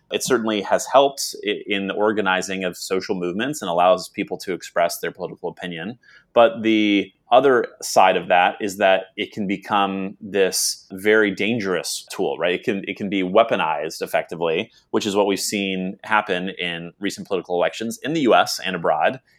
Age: 30-49